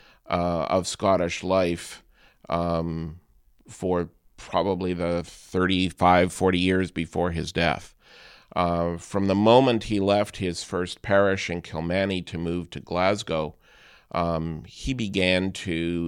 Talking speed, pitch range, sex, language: 125 wpm, 85-95 Hz, male, English